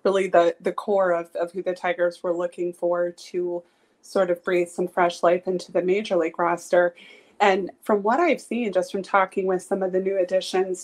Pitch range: 180-200 Hz